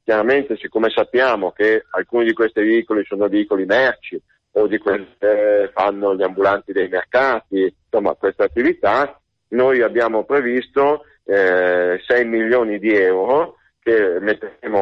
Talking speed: 125 wpm